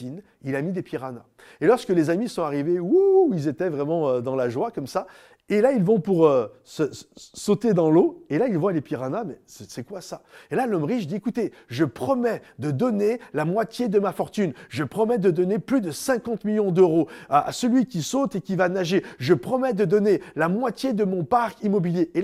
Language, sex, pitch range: French, male, 175-245 Hz